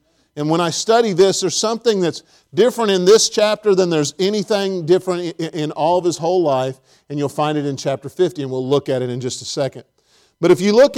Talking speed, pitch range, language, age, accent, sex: 230 wpm, 150-210 Hz, English, 40-59, American, male